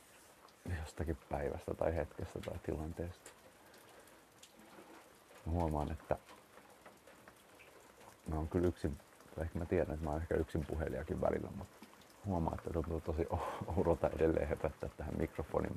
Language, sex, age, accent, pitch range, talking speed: Finnish, male, 30-49, native, 80-95 Hz, 130 wpm